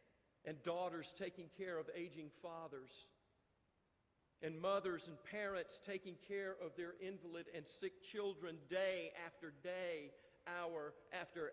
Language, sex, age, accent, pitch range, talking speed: English, male, 50-69, American, 150-190 Hz, 125 wpm